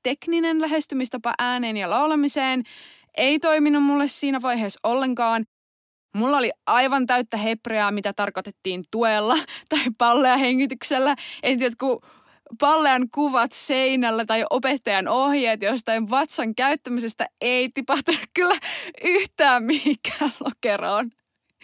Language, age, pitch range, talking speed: Finnish, 20-39, 220-285 Hz, 110 wpm